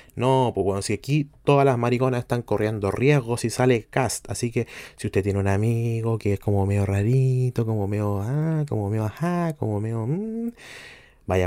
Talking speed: 195 wpm